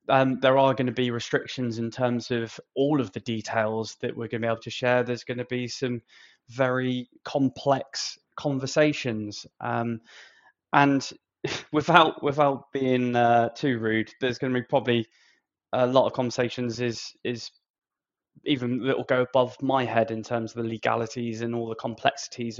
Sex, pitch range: male, 115-135 Hz